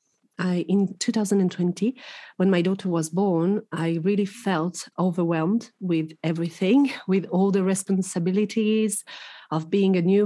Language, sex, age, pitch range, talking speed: English, female, 40-59, 175-210 Hz, 125 wpm